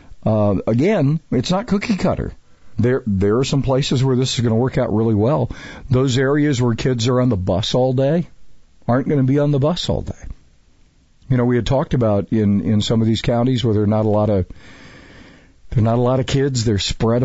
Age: 50-69